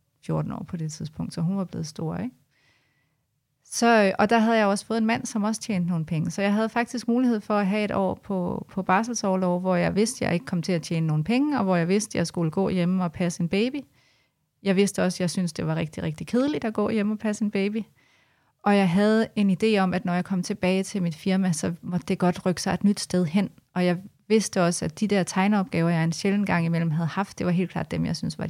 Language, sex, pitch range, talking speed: Danish, female, 170-210 Hz, 270 wpm